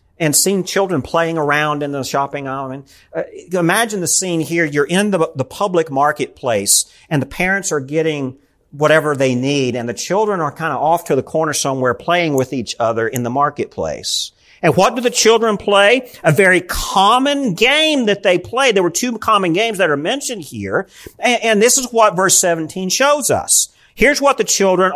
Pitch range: 150-225 Hz